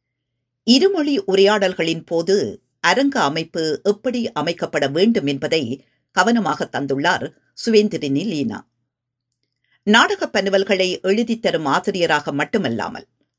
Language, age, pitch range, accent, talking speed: Tamil, 50-69, 140-215 Hz, native, 85 wpm